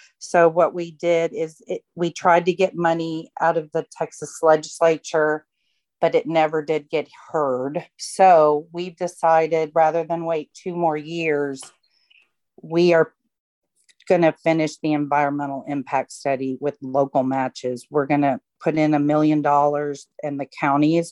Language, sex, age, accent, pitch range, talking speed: English, female, 40-59, American, 150-175 Hz, 150 wpm